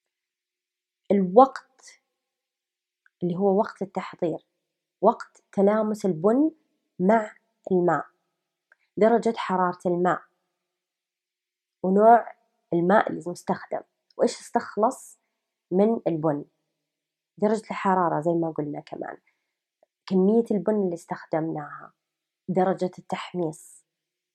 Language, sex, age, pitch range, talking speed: English, female, 20-39, 180-235 Hz, 80 wpm